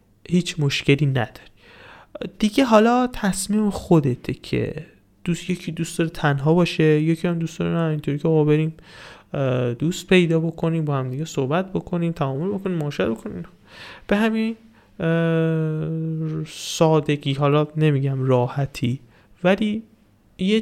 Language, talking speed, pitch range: Persian, 120 wpm, 130-170 Hz